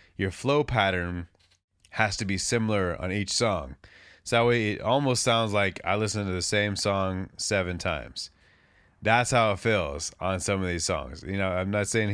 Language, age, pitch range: English, 20-39, 90-115 Hz